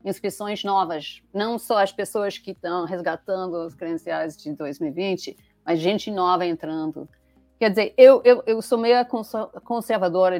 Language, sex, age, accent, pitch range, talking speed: Portuguese, female, 40-59, Brazilian, 170-220 Hz, 145 wpm